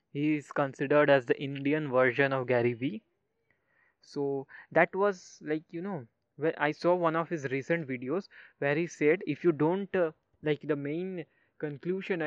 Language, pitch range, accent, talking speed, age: English, 140-170 Hz, Indian, 170 wpm, 20-39